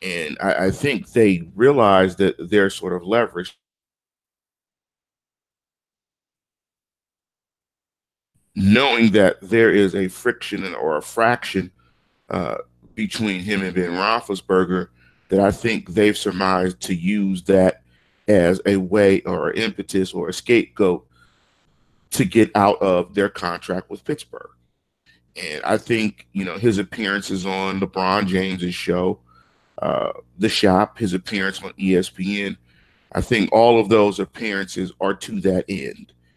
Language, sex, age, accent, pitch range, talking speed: English, male, 40-59, American, 90-105 Hz, 130 wpm